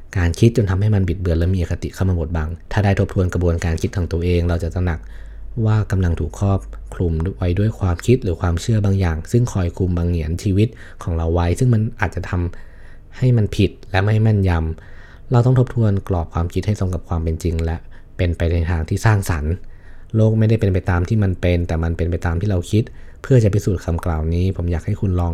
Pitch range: 85-105 Hz